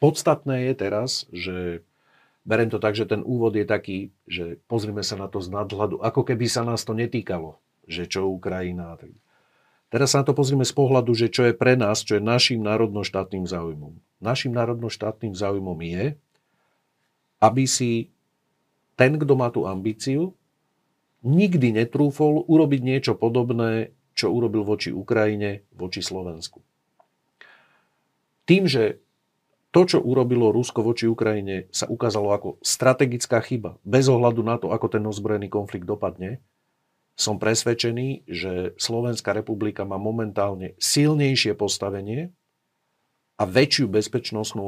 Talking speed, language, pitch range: 135 wpm, Slovak, 100-130 Hz